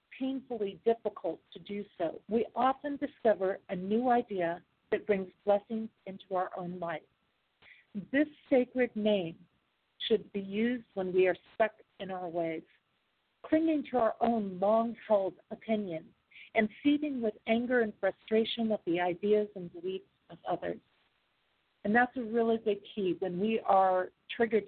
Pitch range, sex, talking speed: 185-220 Hz, female, 145 wpm